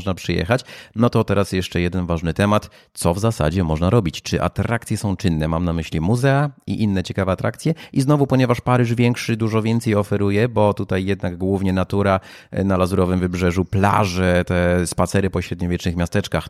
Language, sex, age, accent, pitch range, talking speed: Polish, male, 30-49, native, 85-105 Hz, 175 wpm